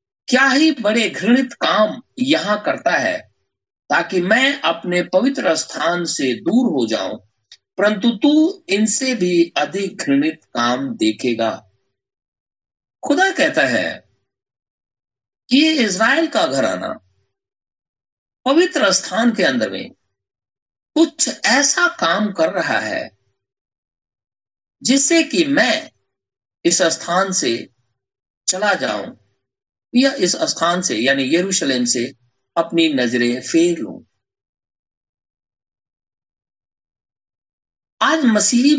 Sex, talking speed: male, 100 wpm